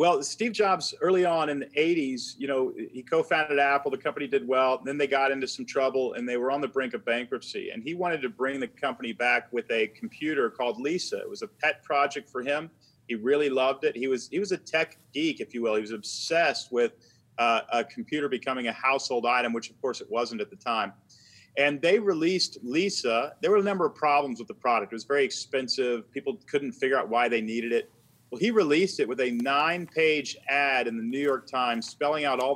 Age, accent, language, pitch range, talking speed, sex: 40-59, American, English, 125-165 Hz, 230 wpm, male